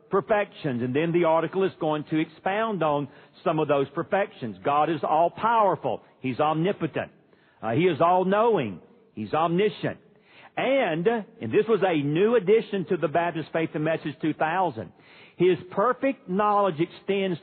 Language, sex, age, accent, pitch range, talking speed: English, male, 50-69, American, 155-200 Hz, 155 wpm